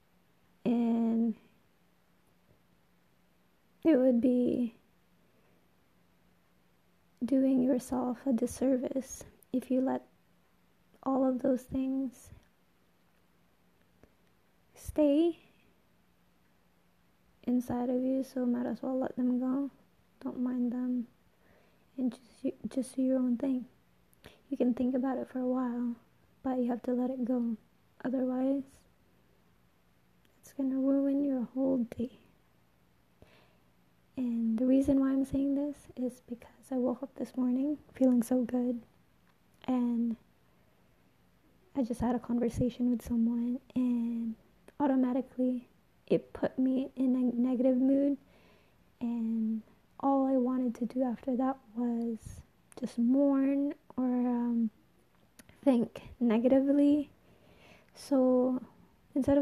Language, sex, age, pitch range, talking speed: English, female, 20-39, 235-265 Hz, 110 wpm